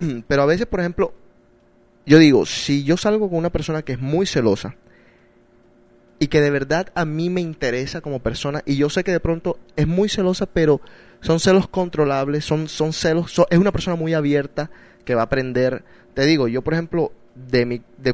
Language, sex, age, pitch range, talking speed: Spanish, male, 30-49, 120-160 Hz, 200 wpm